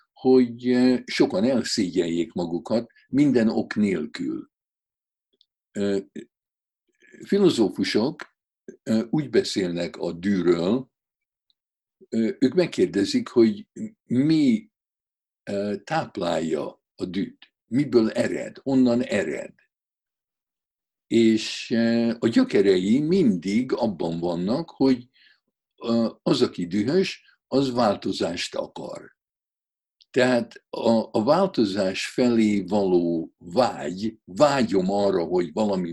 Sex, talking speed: male, 80 wpm